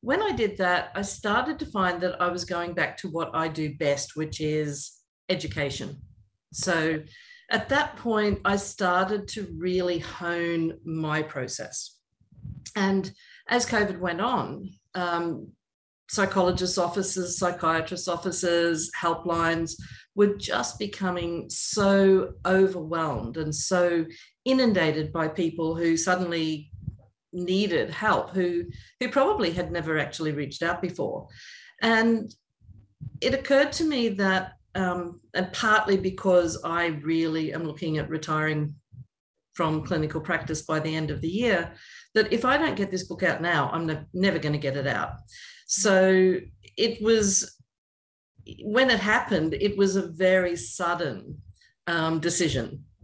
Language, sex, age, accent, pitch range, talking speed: English, female, 50-69, Australian, 160-195 Hz, 135 wpm